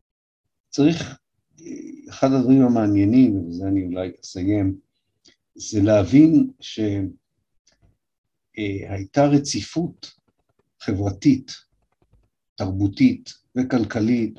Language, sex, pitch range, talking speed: Hebrew, male, 95-130 Hz, 65 wpm